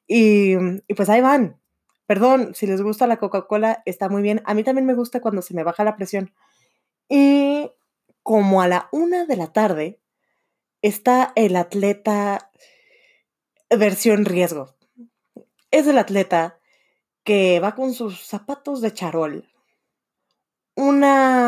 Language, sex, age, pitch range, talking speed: Spanish, female, 20-39, 180-245 Hz, 135 wpm